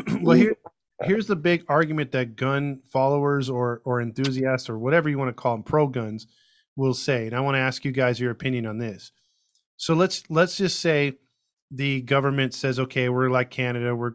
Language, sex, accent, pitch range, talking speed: English, male, American, 125-150 Hz, 200 wpm